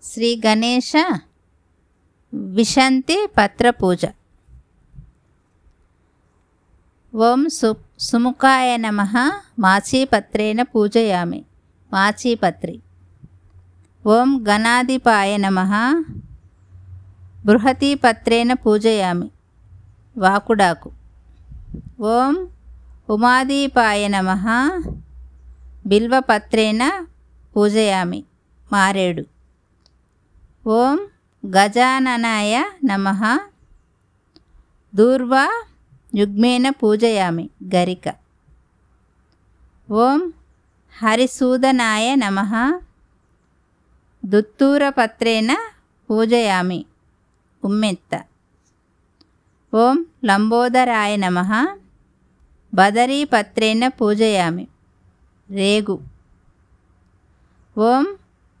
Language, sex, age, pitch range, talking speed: Telugu, female, 50-69, 150-245 Hz, 40 wpm